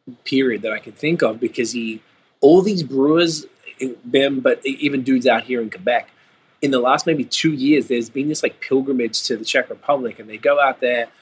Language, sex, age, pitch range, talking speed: English, male, 20-39, 115-140 Hz, 210 wpm